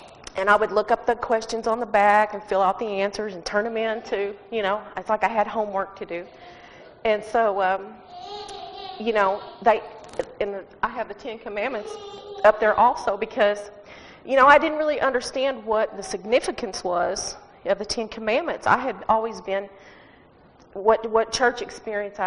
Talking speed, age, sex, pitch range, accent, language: 180 wpm, 40-59, female, 195-230 Hz, American, English